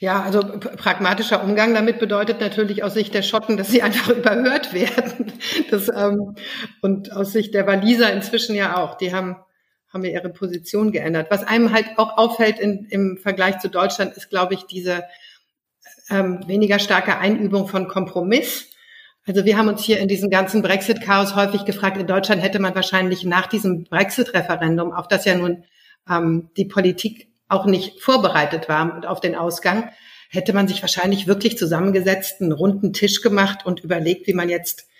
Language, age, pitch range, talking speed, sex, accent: German, 50-69, 180-210 Hz, 175 wpm, female, German